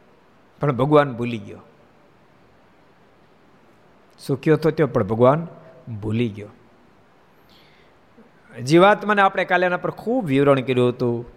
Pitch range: 125-180 Hz